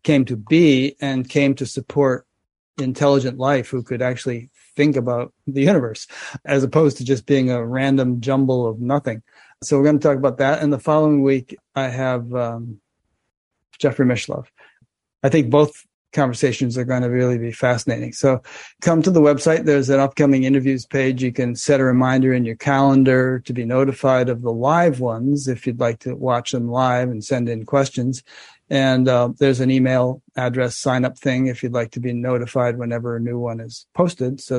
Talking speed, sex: 190 wpm, male